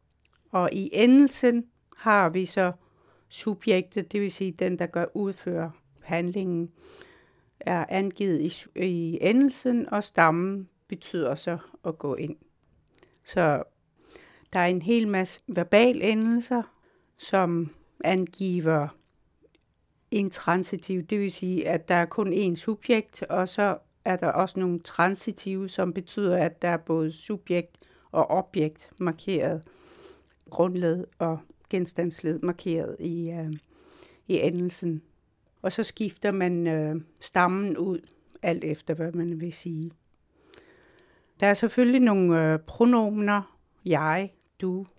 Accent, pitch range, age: native, 165-200 Hz, 60-79